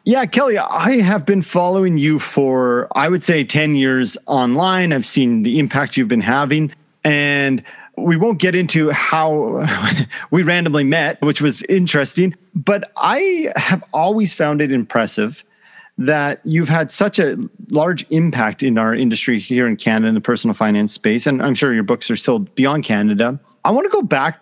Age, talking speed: 30-49, 175 wpm